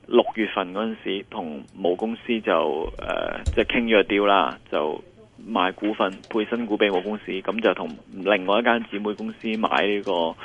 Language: Chinese